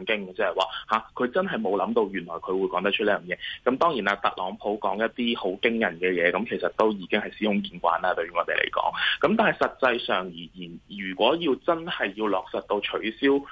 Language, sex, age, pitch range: Chinese, male, 20-39, 100-135 Hz